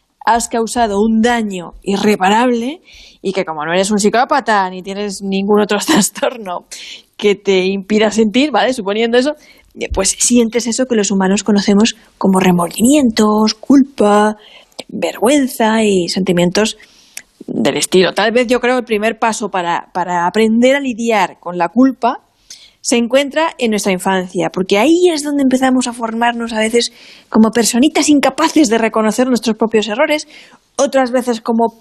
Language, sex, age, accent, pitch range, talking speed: Spanish, female, 20-39, Spanish, 200-250 Hz, 150 wpm